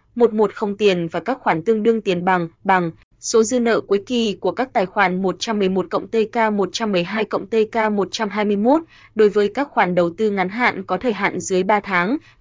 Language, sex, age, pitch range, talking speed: Vietnamese, female, 20-39, 185-225 Hz, 195 wpm